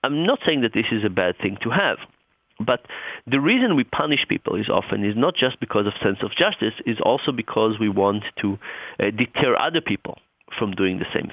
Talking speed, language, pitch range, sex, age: 210 wpm, English, 105-135 Hz, male, 40-59